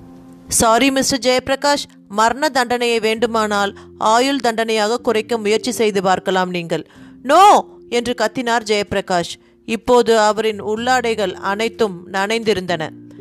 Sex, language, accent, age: female, Tamil, native, 30-49